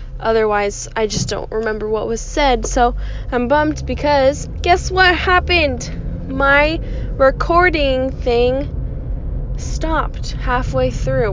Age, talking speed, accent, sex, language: 10-29, 110 wpm, American, female, English